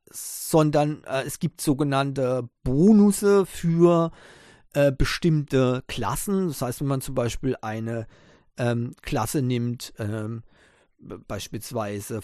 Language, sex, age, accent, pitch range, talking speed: German, male, 40-59, German, 120-155 Hz, 115 wpm